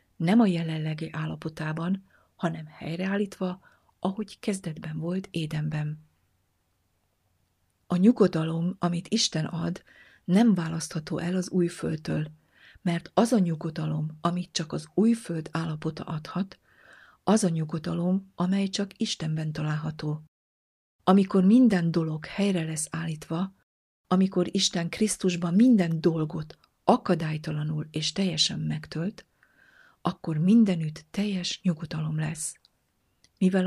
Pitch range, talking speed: 155-190 Hz, 105 wpm